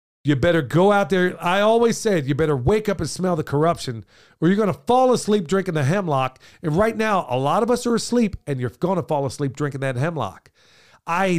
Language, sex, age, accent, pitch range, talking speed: English, male, 50-69, American, 135-175 Hz, 230 wpm